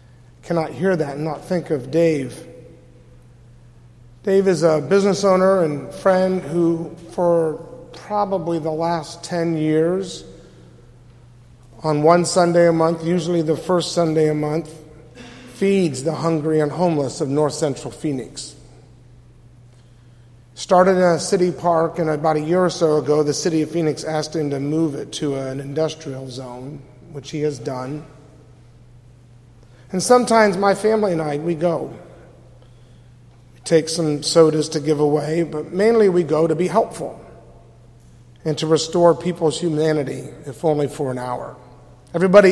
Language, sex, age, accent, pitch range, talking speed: English, male, 40-59, American, 125-170 Hz, 145 wpm